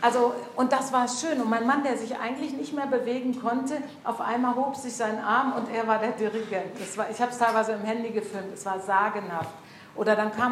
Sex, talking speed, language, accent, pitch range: female, 235 wpm, German, German, 205-245 Hz